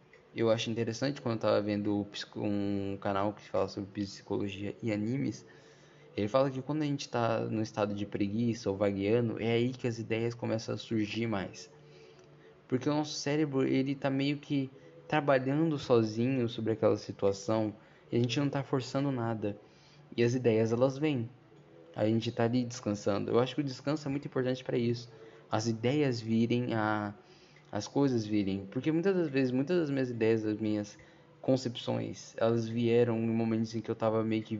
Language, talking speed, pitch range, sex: Portuguese, 180 wpm, 105-135 Hz, male